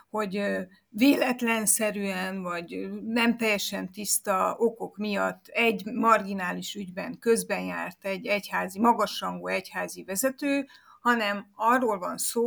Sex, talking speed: female, 105 wpm